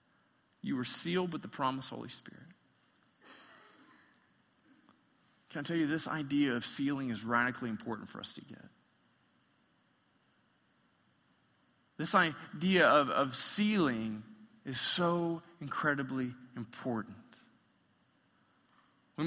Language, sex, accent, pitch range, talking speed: English, male, American, 145-180 Hz, 105 wpm